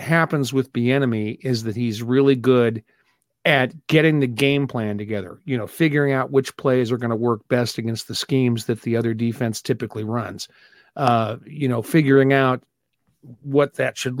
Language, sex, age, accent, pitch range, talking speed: English, male, 50-69, American, 125-165 Hz, 180 wpm